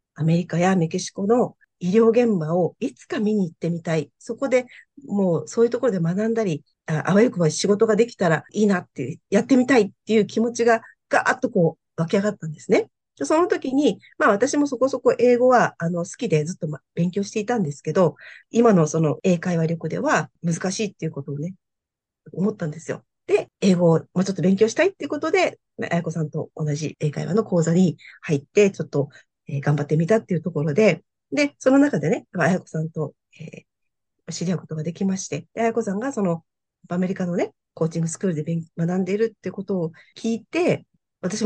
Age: 40-59